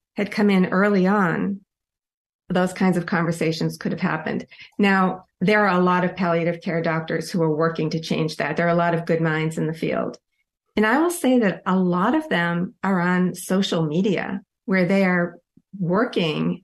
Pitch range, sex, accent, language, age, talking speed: 175-215 Hz, female, American, English, 40-59, 195 wpm